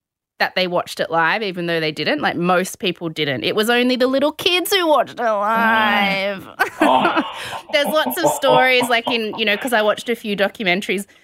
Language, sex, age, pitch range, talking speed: English, female, 20-39, 190-235 Hz, 200 wpm